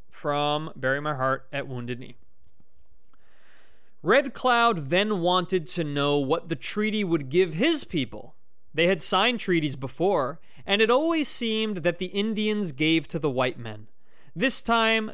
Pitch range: 140-195 Hz